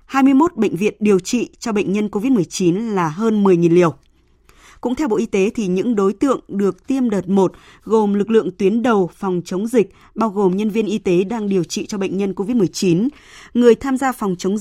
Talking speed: 215 wpm